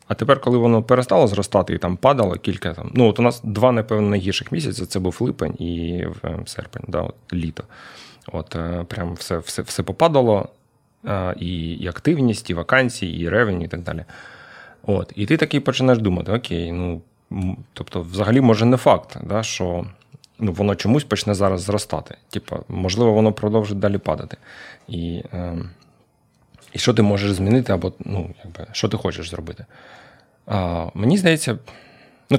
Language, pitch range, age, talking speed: Ukrainian, 95-125 Hz, 30-49, 160 wpm